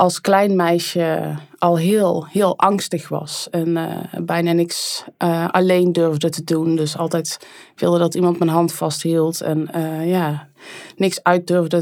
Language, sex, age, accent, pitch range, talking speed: Dutch, female, 20-39, Dutch, 160-175 Hz, 155 wpm